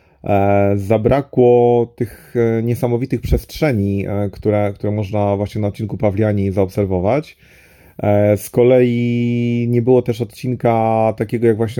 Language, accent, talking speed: Polish, native, 105 wpm